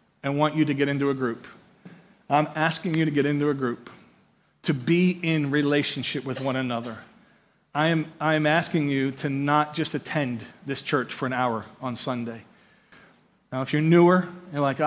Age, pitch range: 40-59, 145-185 Hz